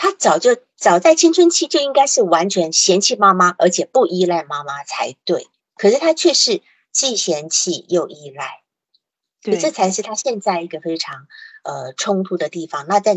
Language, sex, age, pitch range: Chinese, female, 50-69, 165-230 Hz